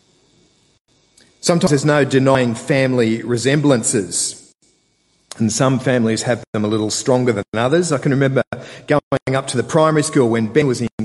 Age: 40-59